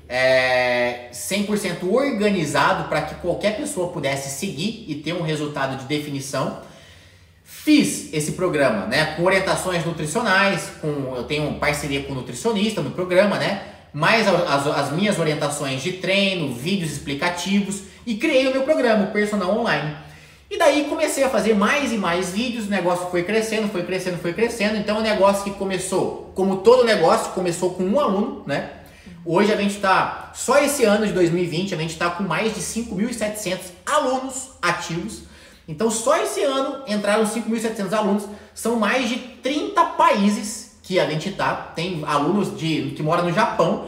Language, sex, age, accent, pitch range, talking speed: Portuguese, male, 20-39, Brazilian, 170-225 Hz, 165 wpm